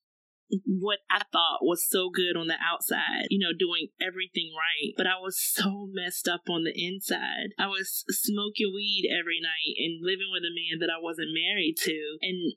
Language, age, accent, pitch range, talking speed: English, 30-49, American, 175-210 Hz, 190 wpm